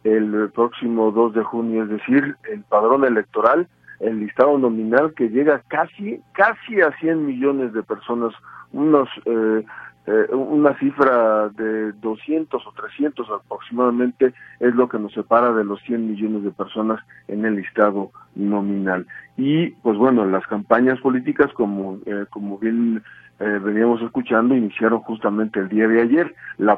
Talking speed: 150 wpm